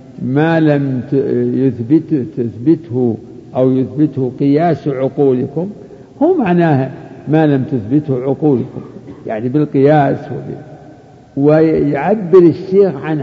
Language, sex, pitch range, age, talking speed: Arabic, male, 140-170 Hz, 60-79, 95 wpm